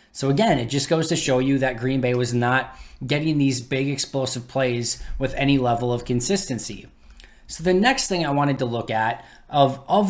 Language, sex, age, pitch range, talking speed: English, male, 20-39, 120-150 Hz, 200 wpm